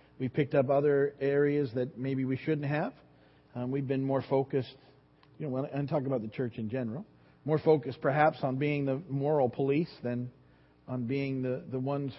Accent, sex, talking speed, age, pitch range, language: American, male, 190 wpm, 40-59, 125-150 Hz, English